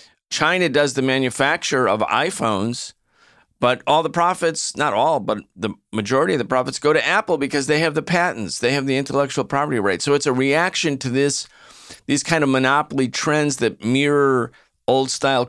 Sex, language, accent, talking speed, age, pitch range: male, English, American, 180 wpm, 50-69, 110-145 Hz